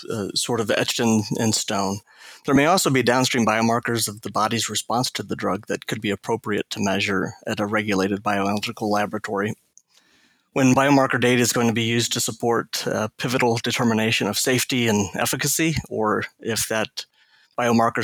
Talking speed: 175 wpm